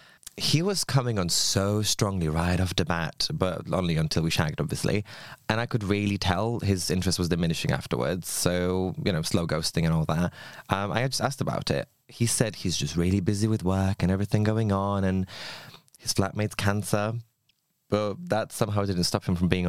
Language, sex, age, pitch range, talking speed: English, male, 20-39, 90-115 Hz, 200 wpm